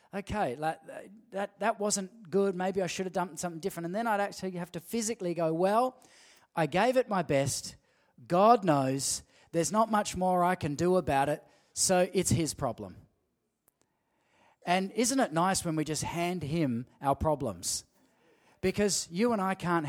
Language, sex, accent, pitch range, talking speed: English, male, Australian, 150-195 Hz, 170 wpm